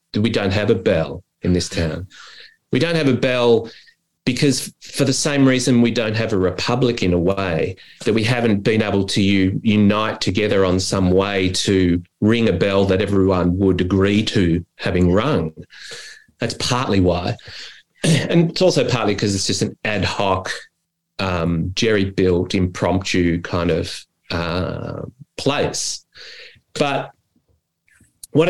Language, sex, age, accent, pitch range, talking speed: English, male, 30-49, Australian, 95-125 Hz, 145 wpm